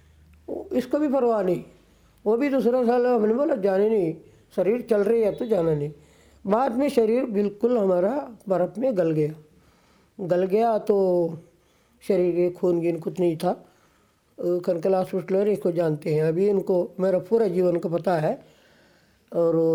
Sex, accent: female, native